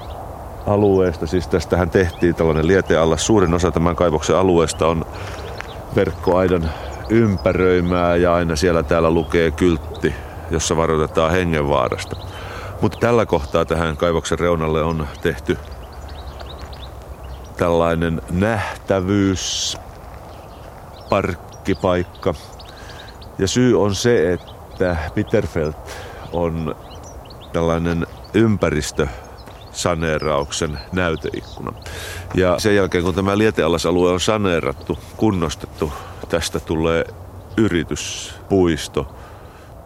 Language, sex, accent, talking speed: Finnish, male, native, 85 wpm